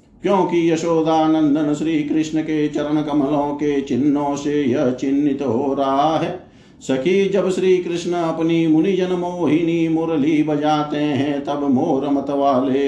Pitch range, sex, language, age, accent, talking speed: 135-165 Hz, male, Hindi, 50-69, native, 135 wpm